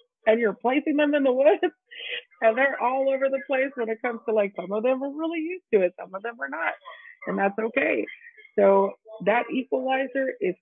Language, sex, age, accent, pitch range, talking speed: English, female, 30-49, American, 185-245 Hz, 215 wpm